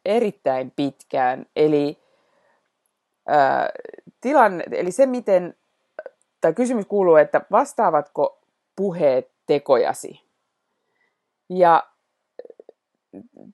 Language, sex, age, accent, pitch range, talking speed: Finnish, female, 30-49, native, 150-230 Hz, 75 wpm